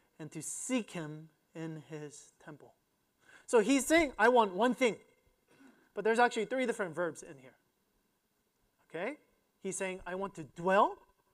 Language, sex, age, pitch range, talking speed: English, male, 30-49, 155-215 Hz, 155 wpm